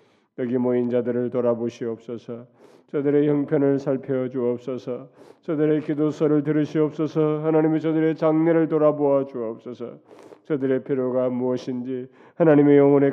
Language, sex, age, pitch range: Korean, male, 30-49, 110-145 Hz